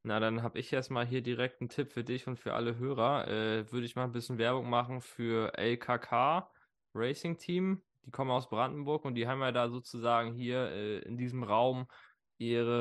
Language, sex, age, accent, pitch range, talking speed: German, male, 20-39, German, 115-130 Hz, 200 wpm